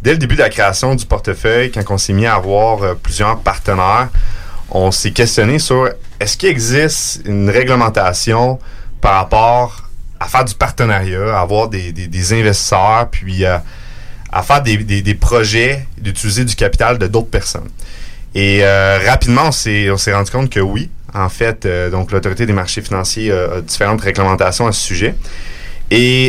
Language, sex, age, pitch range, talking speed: French, male, 30-49, 95-120 Hz, 180 wpm